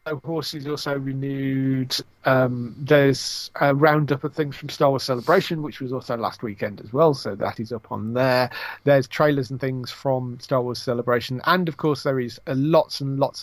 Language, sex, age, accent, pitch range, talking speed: English, male, 40-59, British, 115-140 Hz, 195 wpm